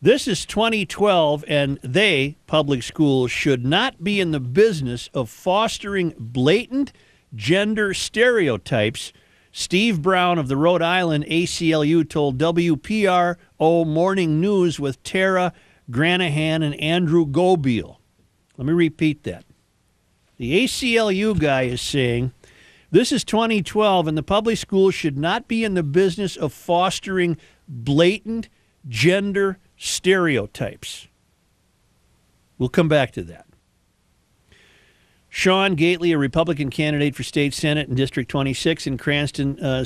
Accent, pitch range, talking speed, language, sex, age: American, 130-180 Hz, 120 wpm, English, male, 50-69